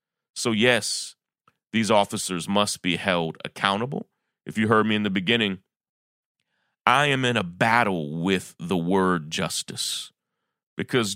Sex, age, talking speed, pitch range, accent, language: male, 30-49, 135 wpm, 100-135 Hz, American, English